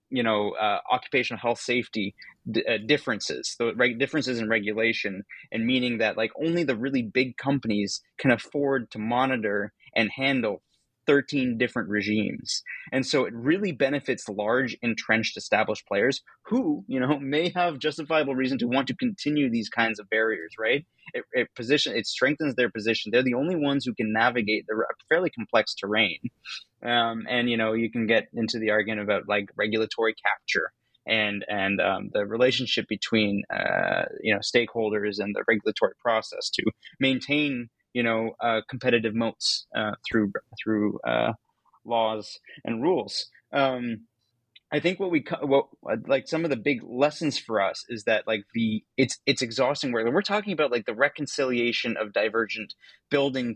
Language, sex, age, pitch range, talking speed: English, male, 30-49, 110-140 Hz, 165 wpm